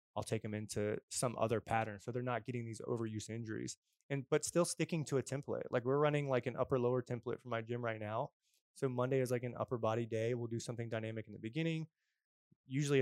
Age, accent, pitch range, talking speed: 20-39, American, 110-130 Hz, 230 wpm